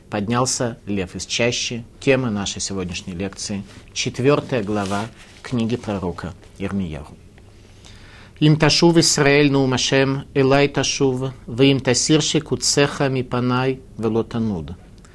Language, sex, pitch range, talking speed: Russian, male, 100-135 Hz, 90 wpm